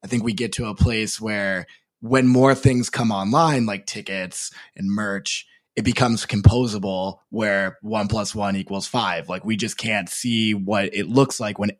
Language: English